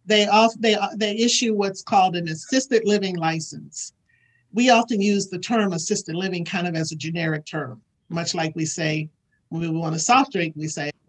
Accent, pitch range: American, 170-225 Hz